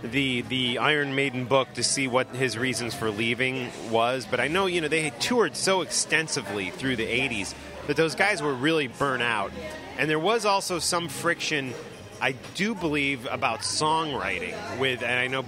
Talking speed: 185 wpm